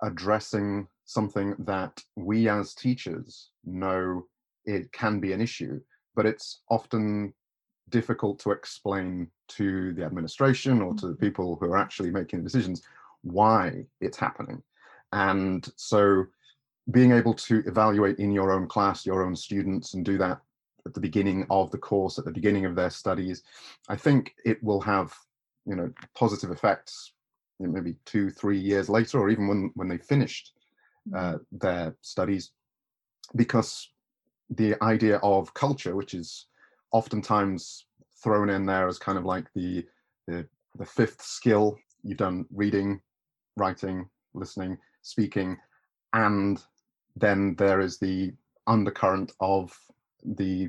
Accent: British